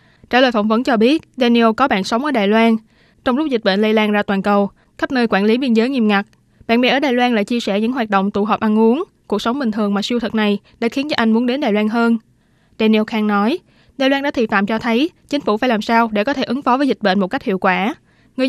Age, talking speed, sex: 20-39, 290 wpm, female